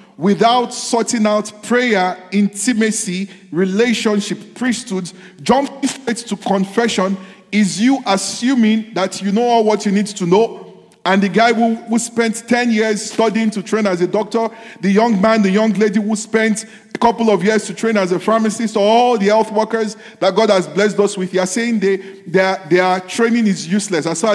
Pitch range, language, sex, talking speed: 185-220 Hz, English, male, 185 wpm